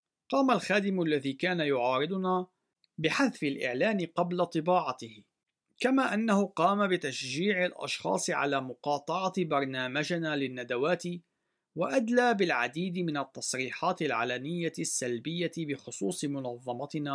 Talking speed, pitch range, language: 90 wpm, 135-180 Hz, Arabic